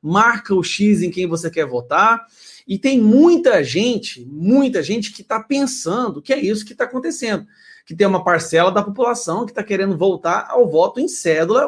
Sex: male